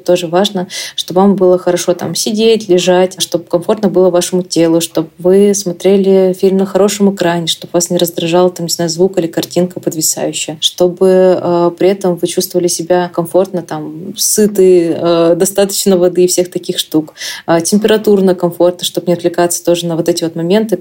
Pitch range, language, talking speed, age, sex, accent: 170-190 Hz, Russian, 175 wpm, 20-39, female, native